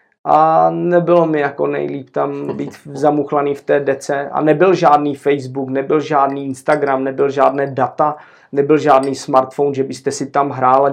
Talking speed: 160 wpm